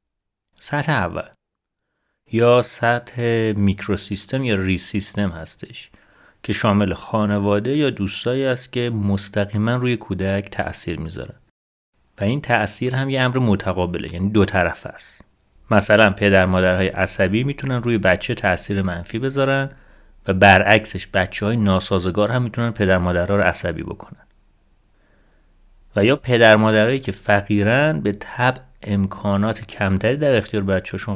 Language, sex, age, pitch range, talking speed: Persian, male, 30-49, 95-120 Hz, 125 wpm